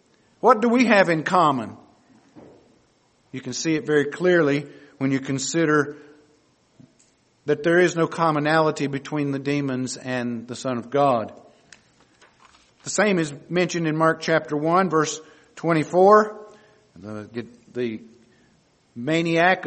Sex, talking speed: male, 125 wpm